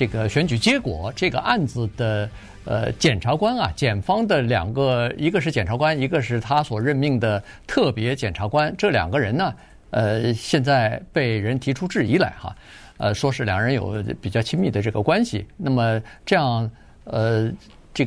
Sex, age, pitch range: male, 50-69, 110-155 Hz